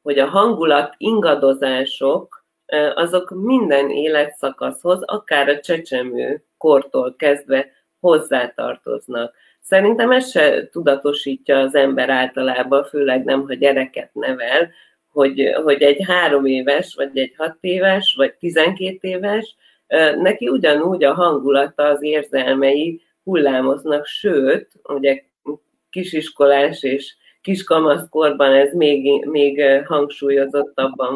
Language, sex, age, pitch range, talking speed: Hungarian, female, 30-49, 135-175 Hz, 105 wpm